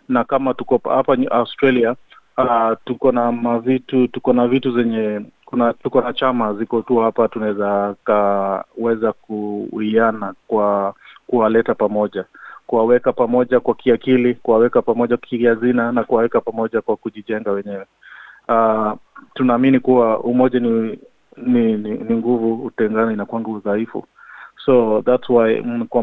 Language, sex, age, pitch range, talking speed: Swahili, male, 30-49, 110-125 Hz, 155 wpm